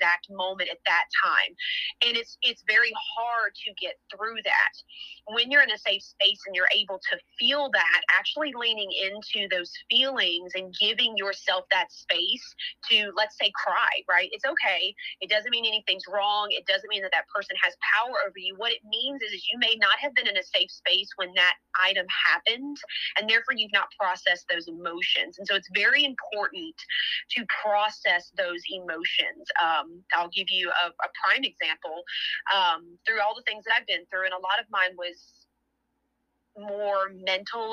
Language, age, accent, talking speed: English, 30-49, American, 185 wpm